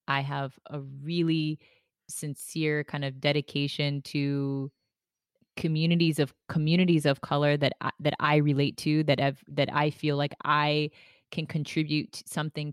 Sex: female